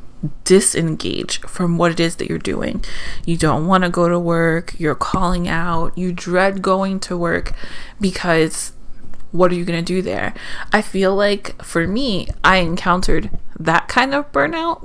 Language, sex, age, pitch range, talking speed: English, female, 30-49, 165-200 Hz, 170 wpm